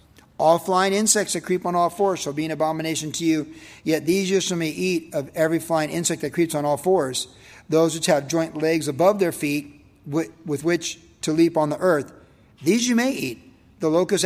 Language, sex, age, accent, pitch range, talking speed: English, male, 50-69, American, 150-180 Hz, 210 wpm